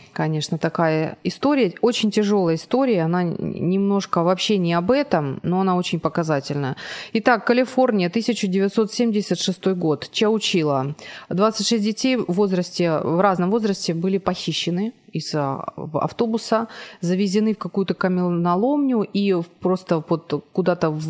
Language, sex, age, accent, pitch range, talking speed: Ukrainian, female, 30-49, native, 165-215 Hz, 115 wpm